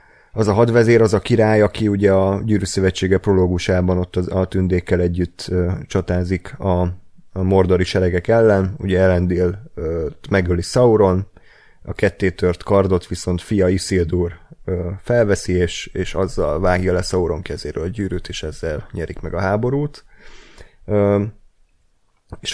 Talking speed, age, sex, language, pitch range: 130 wpm, 30-49, male, Hungarian, 90-105 Hz